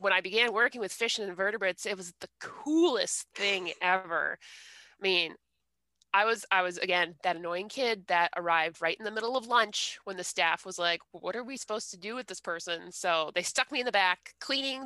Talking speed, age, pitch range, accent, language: 220 wpm, 20-39, 175-245 Hz, American, English